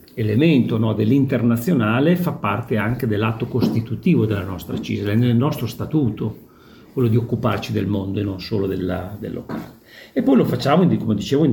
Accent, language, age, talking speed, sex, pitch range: native, Italian, 50-69, 160 wpm, male, 105-130 Hz